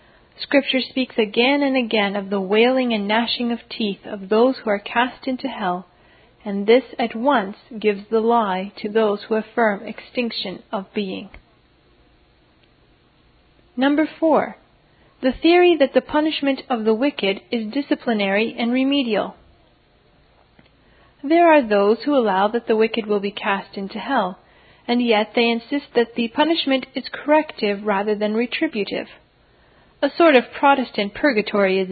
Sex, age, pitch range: female, 40-59, 210-255 Hz